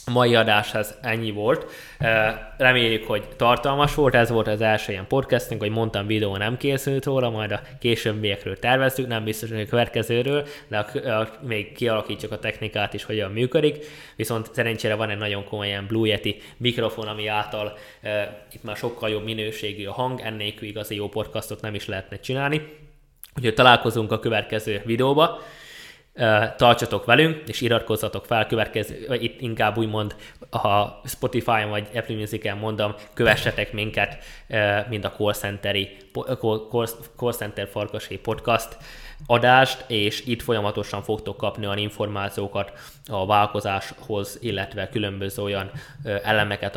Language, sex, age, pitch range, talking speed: Hungarian, male, 20-39, 105-120 Hz, 140 wpm